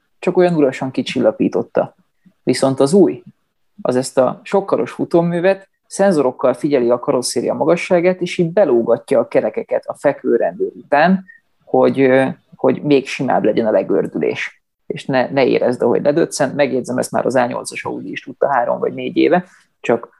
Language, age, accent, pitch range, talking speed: English, 30-49, Finnish, 130-175 Hz, 155 wpm